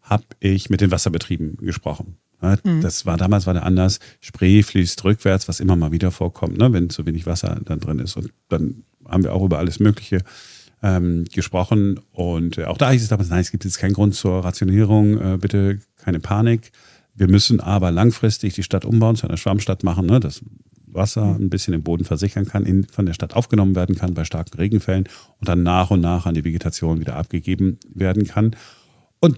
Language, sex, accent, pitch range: German, male, German, 90-110 Hz